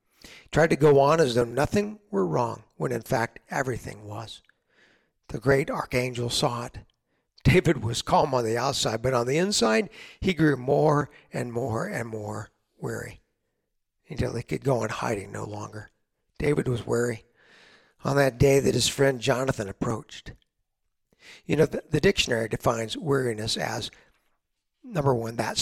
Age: 60-79